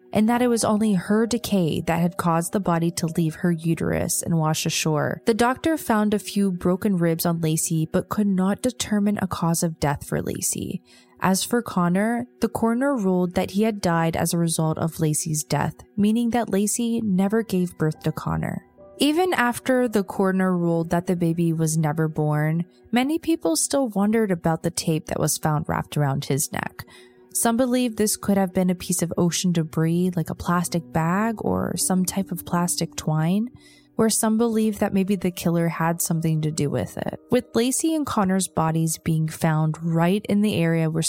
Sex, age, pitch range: female, 20-39, 165-220 Hz